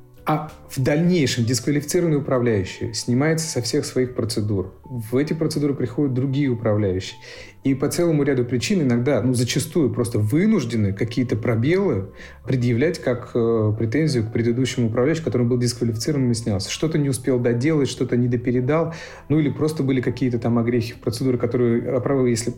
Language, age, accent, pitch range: Russian, 40-59, native, 115-135 Hz